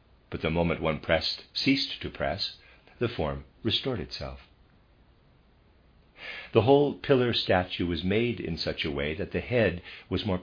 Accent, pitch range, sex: American, 80-105 Hz, male